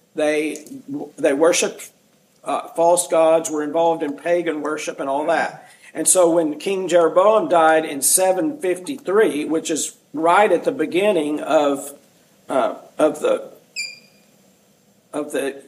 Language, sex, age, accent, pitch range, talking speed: English, male, 50-69, American, 155-200 Hz, 130 wpm